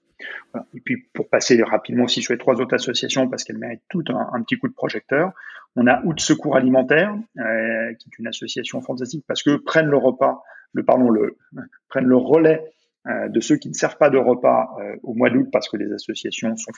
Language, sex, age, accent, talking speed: French, male, 30-49, French, 215 wpm